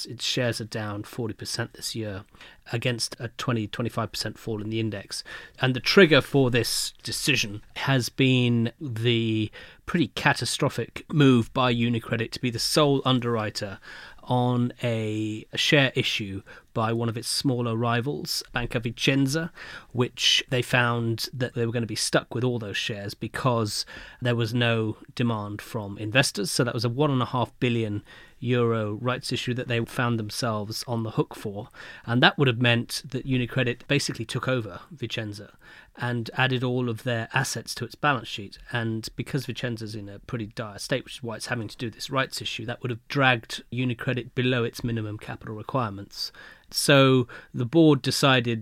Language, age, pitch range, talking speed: English, 30-49, 115-130 Hz, 170 wpm